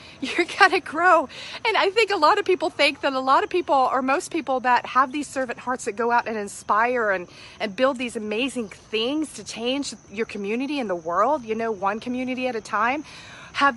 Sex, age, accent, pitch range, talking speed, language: female, 40-59, American, 220-280 Hz, 220 wpm, English